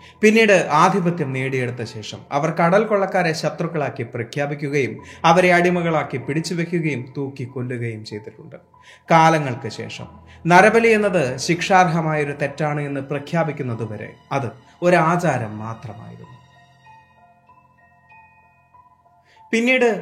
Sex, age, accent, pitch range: male, 30-49, native, 125-170 Hz